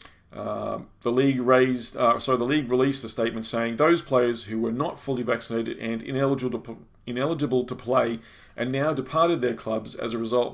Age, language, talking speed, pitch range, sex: 30-49, English, 190 wpm, 115-135 Hz, male